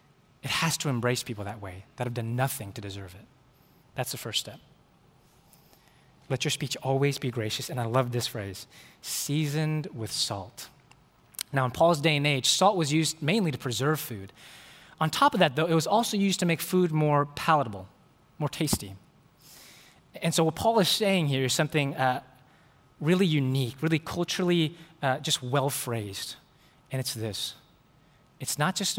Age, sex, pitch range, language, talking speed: 20-39, male, 125-160 Hz, English, 175 wpm